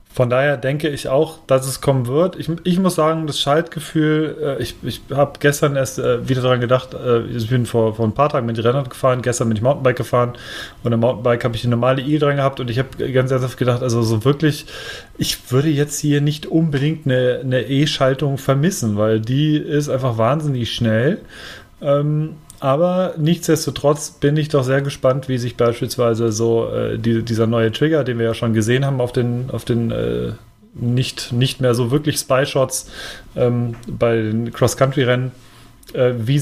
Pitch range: 120-145 Hz